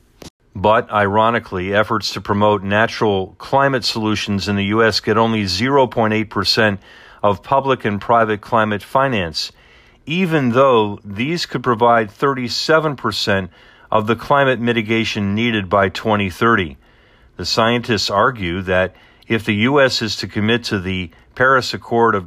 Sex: male